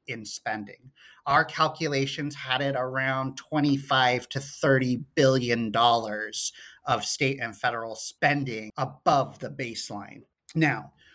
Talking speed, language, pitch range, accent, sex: 110 wpm, English, 130-165 Hz, American, male